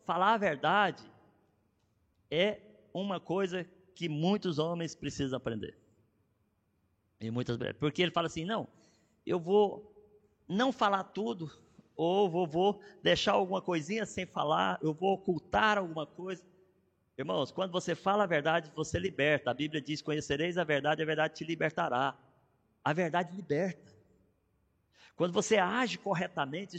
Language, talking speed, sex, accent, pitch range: Portuguese, 135 wpm, male, Brazilian, 155-225 Hz